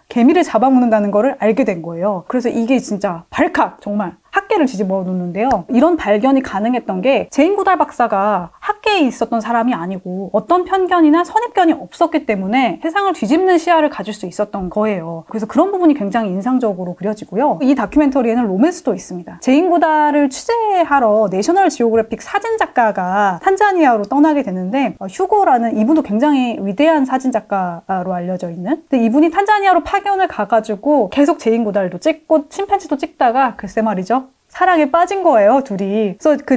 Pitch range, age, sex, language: 210-320 Hz, 20-39, female, Korean